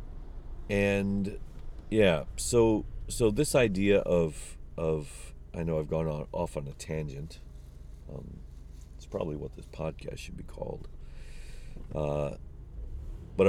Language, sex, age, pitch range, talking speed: English, male, 40-59, 75-105 Hz, 125 wpm